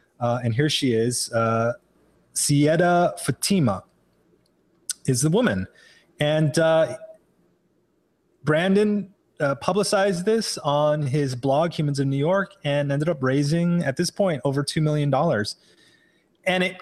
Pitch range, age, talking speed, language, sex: 135-175 Hz, 30-49, 130 wpm, English, male